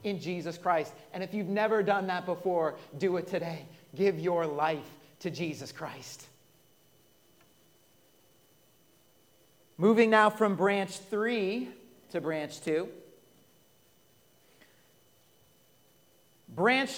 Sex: male